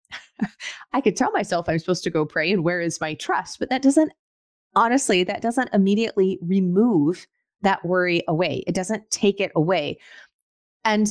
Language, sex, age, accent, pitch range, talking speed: English, female, 30-49, American, 190-245 Hz, 165 wpm